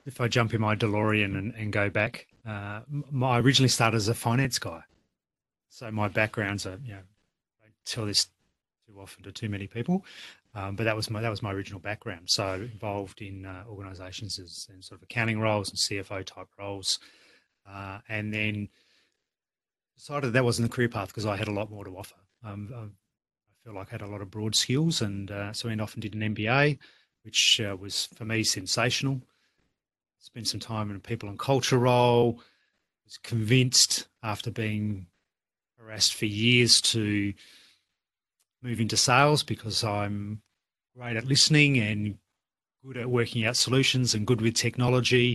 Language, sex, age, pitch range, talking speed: English, male, 30-49, 100-120 Hz, 185 wpm